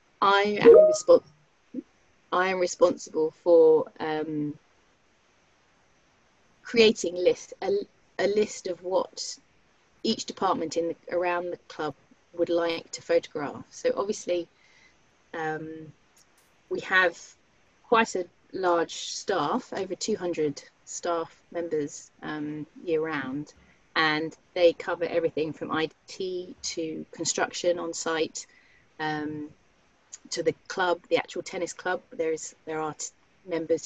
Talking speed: 115 wpm